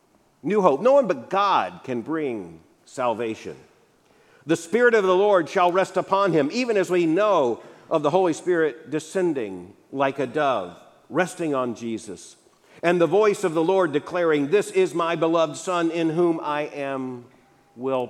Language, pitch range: English, 145-210 Hz